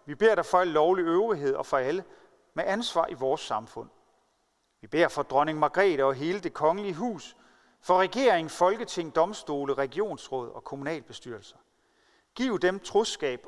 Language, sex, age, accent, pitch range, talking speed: Danish, male, 40-59, native, 140-185 Hz, 155 wpm